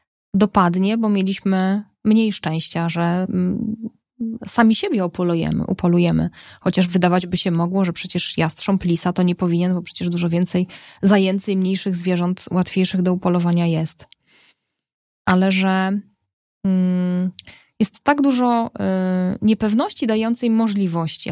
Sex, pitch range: female, 180-205 Hz